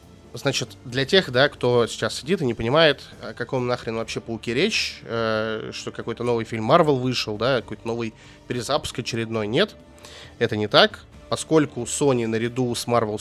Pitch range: 110-130 Hz